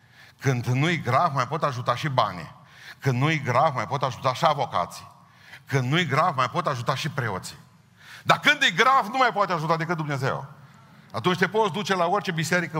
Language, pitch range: Romanian, 115-155 Hz